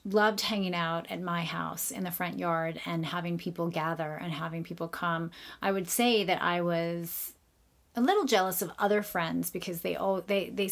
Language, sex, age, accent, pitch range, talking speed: English, female, 30-49, American, 170-195 Hz, 195 wpm